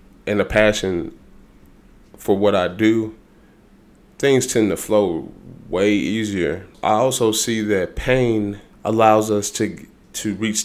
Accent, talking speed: American, 130 wpm